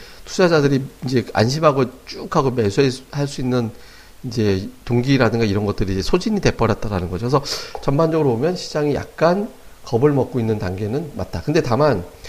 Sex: male